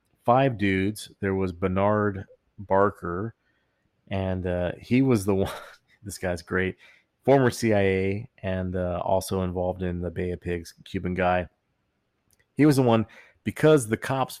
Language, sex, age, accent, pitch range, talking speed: English, male, 30-49, American, 90-110 Hz, 145 wpm